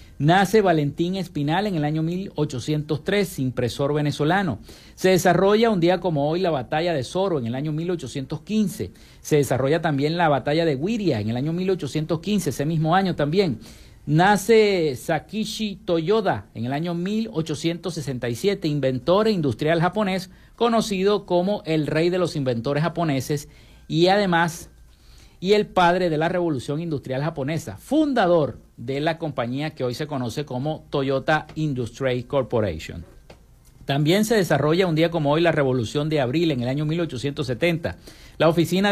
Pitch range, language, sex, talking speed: 135-175 Hz, Spanish, male, 150 wpm